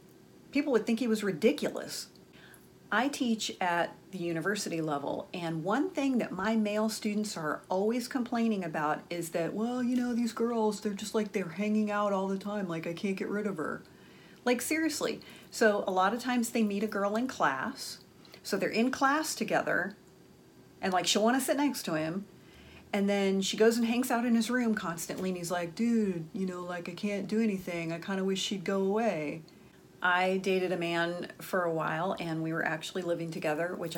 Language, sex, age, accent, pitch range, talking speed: English, female, 40-59, American, 180-240 Hz, 205 wpm